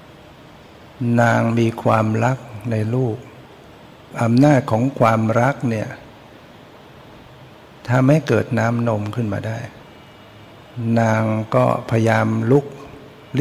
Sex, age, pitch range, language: male, 60-79, 110-125 Hz, Thai